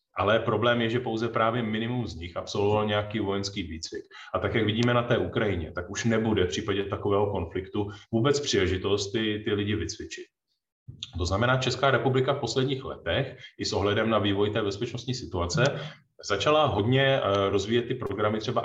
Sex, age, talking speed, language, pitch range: male, 30-49, 175 wpm, Czech, 100-120 Hz